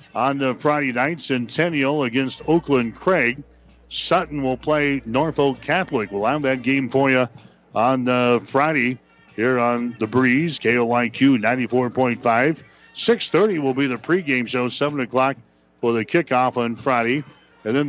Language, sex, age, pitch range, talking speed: English, male, 60-79, 125-150 Hz, 150 wpm